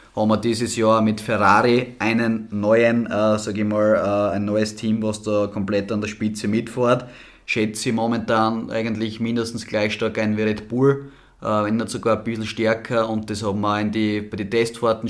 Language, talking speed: German, 200 wpm